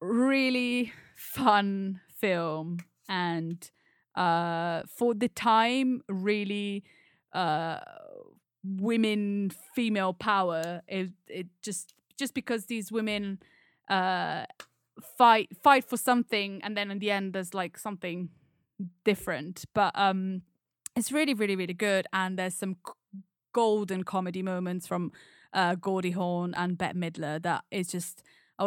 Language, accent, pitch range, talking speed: English, British, 180-215 Hz, 120 wpm